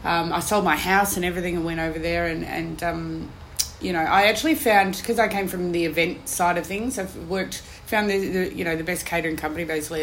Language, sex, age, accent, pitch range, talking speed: English, female, 20-39, Australian, 160-180 Hz, 240 wpm